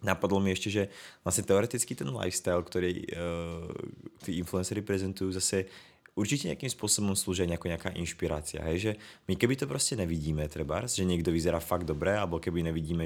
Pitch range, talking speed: 85-95 Hz, 160 wpm